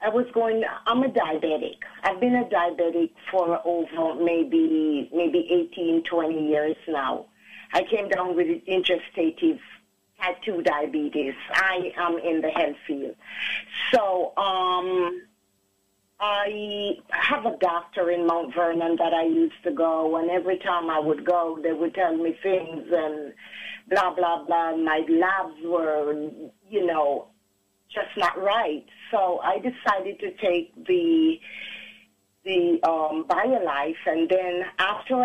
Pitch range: 165-215 Hz